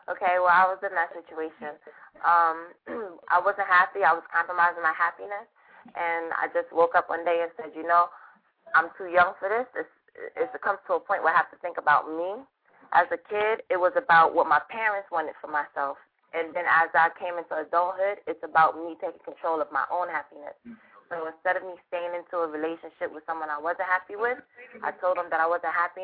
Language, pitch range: English, 160-190 Hz